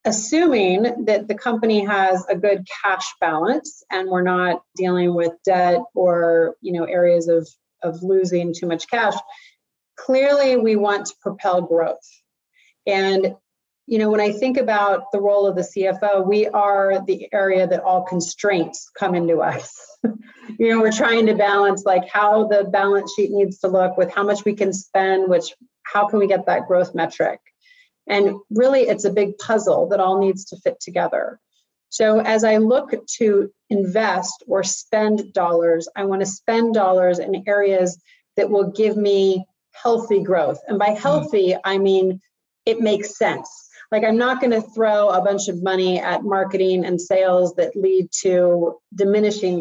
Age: 30-49